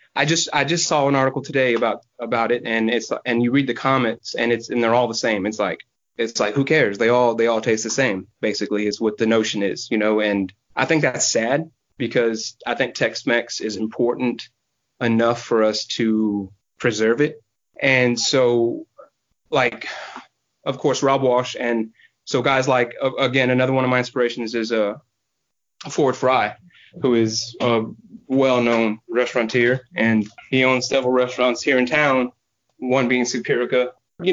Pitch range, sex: 115-130 Hz, male